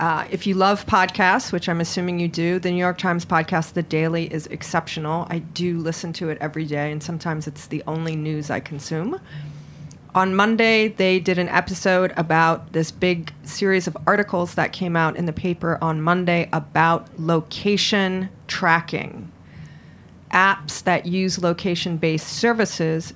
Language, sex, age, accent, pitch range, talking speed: English, female, 40-59, American, 160-185 Hz, 160 wpm